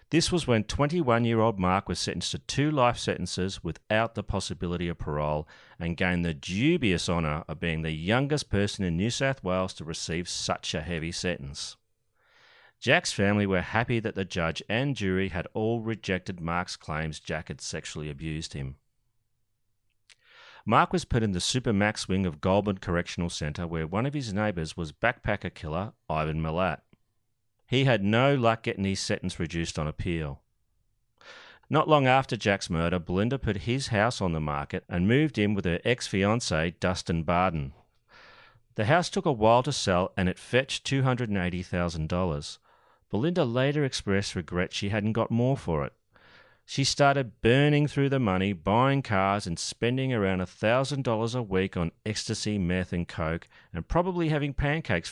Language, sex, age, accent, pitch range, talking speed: English, male, 40-59, Australian, 90-120 Hz, 165 wpm